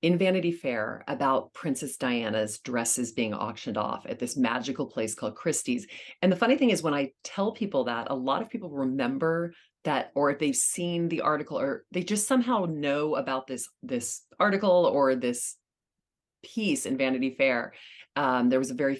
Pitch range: 130-175 Hz